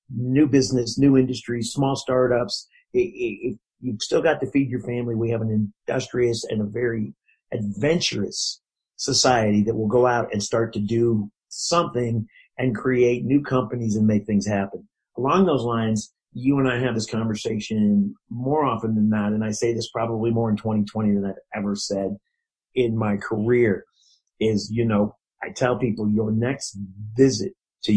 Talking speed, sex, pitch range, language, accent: 170 wpm, male, 105-125 Hz, English, American